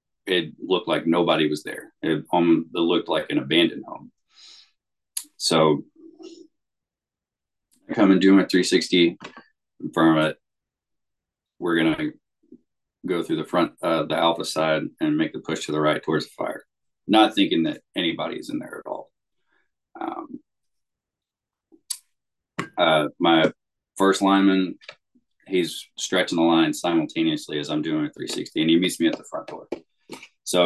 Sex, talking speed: male, 150 wpm